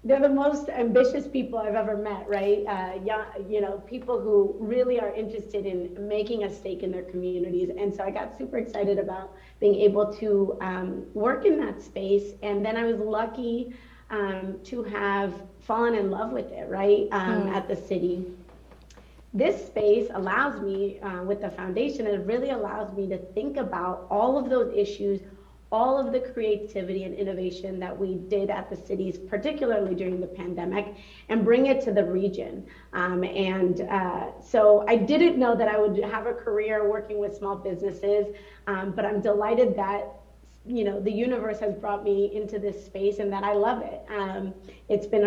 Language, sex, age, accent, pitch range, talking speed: English, female, 30-49, American, 190-215 Hz, 185 wpm